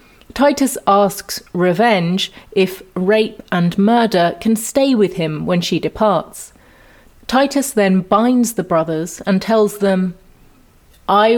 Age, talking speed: 30-49, 120 wpm